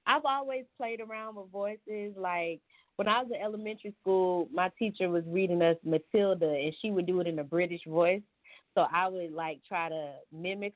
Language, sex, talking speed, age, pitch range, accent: English, female, 195 wpm, 20-39, 155-195 Hz, American